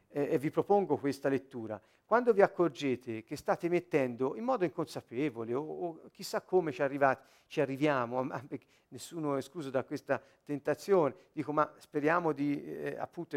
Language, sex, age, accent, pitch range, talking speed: Italian, male, 50-69, native, 135-200 Hz, 165 wpm